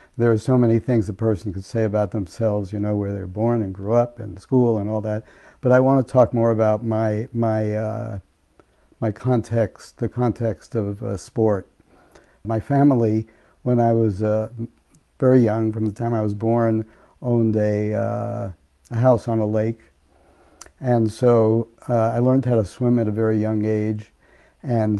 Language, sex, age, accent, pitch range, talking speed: English, male, 60-79, American, 105-120 Hz, 185 wpm